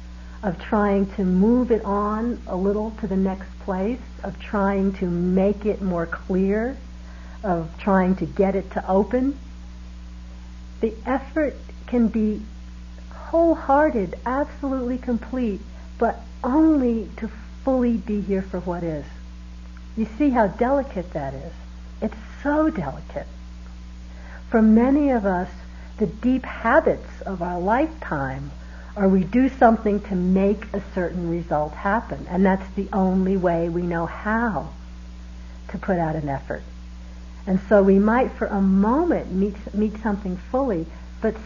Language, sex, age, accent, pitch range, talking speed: English, female, 60-79, American, 150-220 Hz, 140 wpm